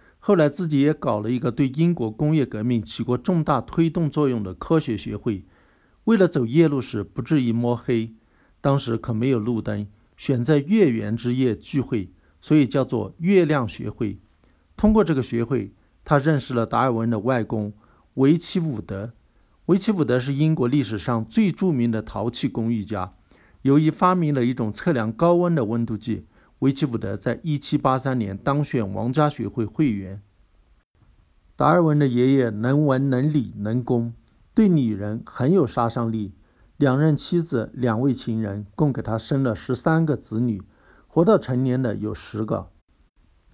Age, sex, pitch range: 50-69, male, 110-145 Hz